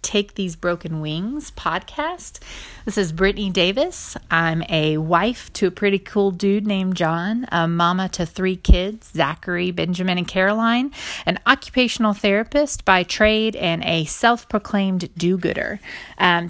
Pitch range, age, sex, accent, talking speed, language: 160-195 Hz, 30-49, female, American, 140 wpm, English